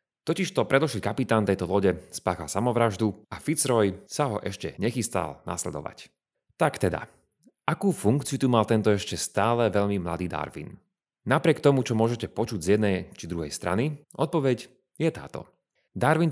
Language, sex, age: Slovak, male, 30-49